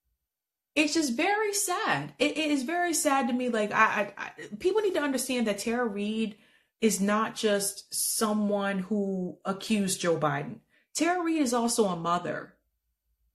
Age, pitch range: 30-49, 195-255 Hz